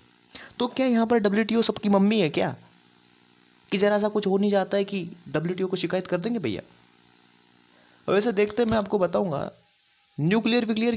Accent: native